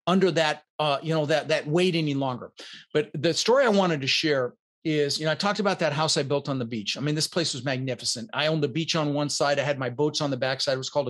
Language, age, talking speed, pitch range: English, 40-59, 285 wpm, 140-175 Hz